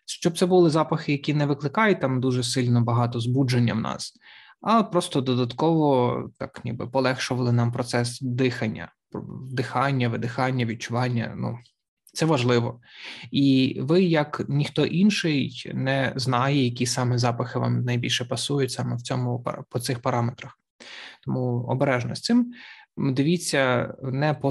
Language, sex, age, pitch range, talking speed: Ukrainian, male, 20-39, 125-160 Hz, 135 wpm